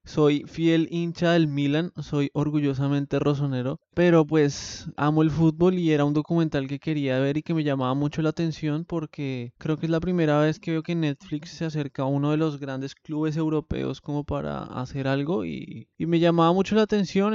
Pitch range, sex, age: 140-165 Hz, male, 20-39